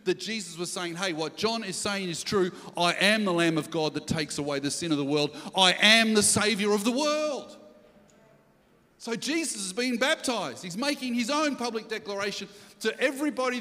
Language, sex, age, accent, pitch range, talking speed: English, male, 30-49, Australian, 200-255 Hz, 200 wpm